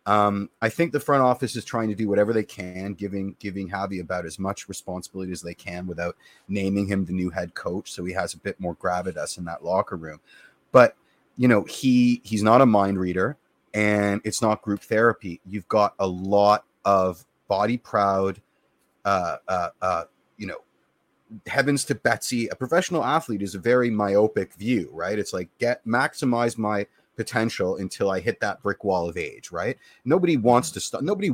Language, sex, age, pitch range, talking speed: English, male, 30-49, 95-120 Hz, 190 wpm